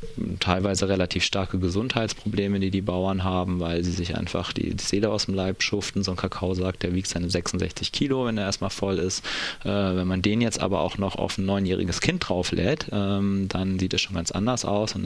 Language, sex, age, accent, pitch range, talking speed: German, male, 30-49, German, 90-100 Hz, 220 wpm